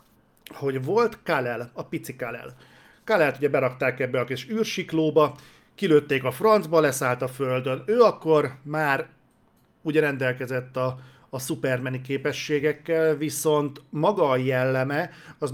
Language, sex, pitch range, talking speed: Hungarian, male, 130-150 Hz, 125 wpm